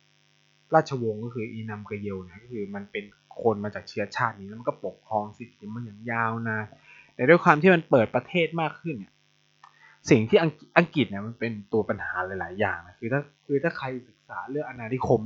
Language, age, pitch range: Thai, 20-39, 110-150 Hz